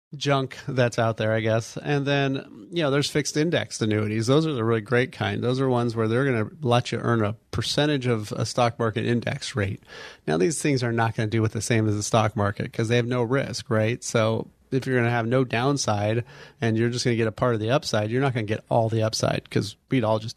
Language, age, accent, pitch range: English, 30-49, American, 110-130 Hz